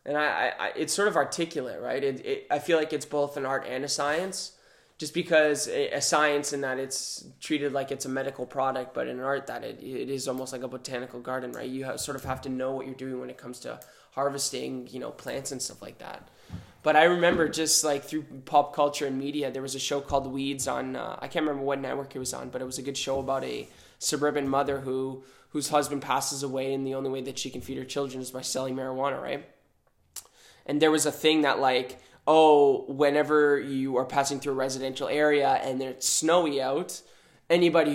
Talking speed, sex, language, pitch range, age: 230 wpm, male, English, 130-145 Hz, 20-39